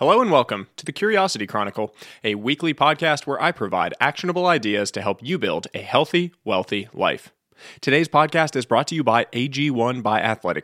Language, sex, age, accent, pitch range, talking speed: English, male, 20-39, American, 110-170 Hz, 185 wpm